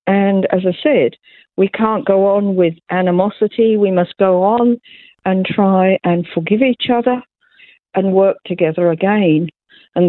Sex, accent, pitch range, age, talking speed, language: female, British, 170-200 Hz, 50-69, 150 wpm, English